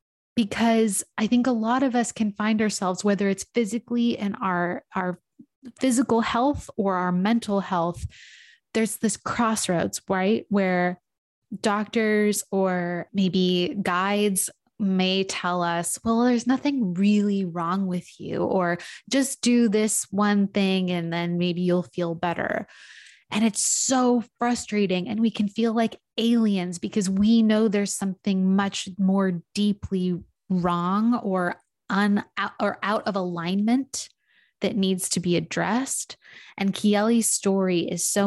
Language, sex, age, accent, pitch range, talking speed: English, female, 20-39, American, 180-220 Hz, 140 wpm